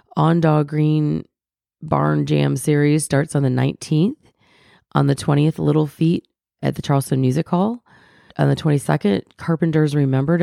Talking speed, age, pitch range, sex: 145 wpm, 30-49, 140-165 Hz, female